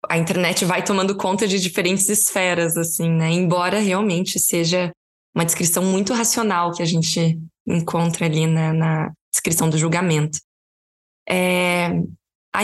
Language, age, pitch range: Portuguese, 10-29, 175-210 Hz